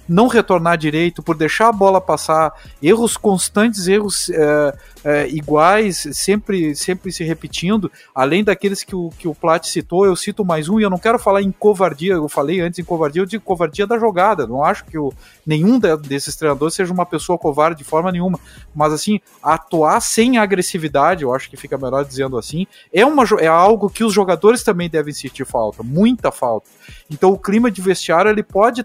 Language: Portuguese